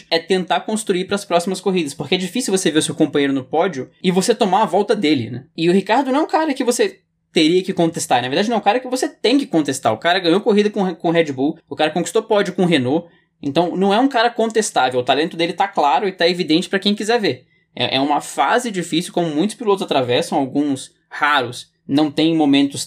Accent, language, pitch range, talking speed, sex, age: Brazilian, Portuguese, 155-225 Hz, 240 wpm, male, 10-29